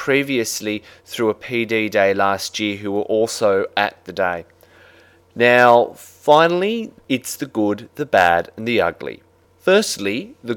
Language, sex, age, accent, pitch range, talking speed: English, male, 30-49, Australian, 105-130 Hz, 140 wpm